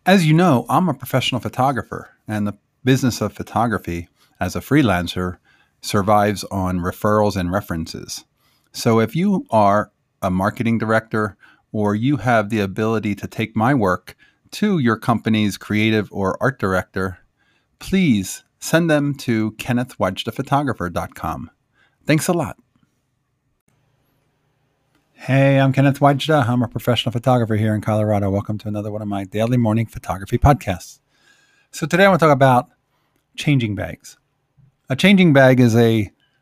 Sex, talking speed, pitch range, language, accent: male, 140 wpm, 105-135 Hz, English, American